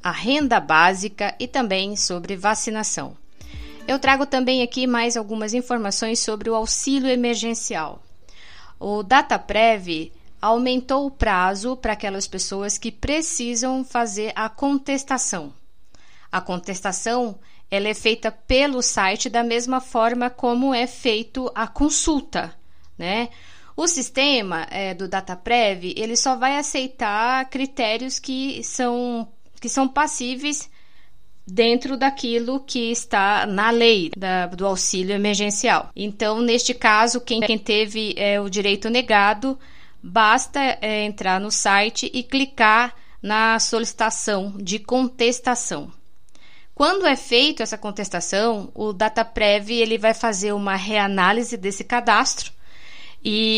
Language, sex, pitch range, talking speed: Portuguese, female, 205-250 Hz, 115 wpm